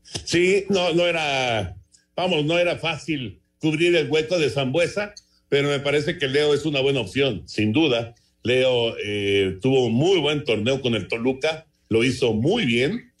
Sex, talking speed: male, 175 wpm